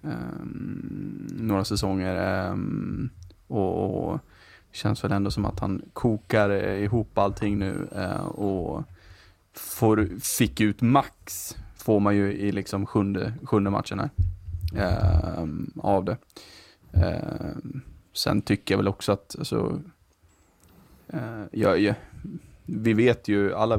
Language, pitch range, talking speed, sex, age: Swedish, 95-110 Hz, 120 wpm, male, 20-39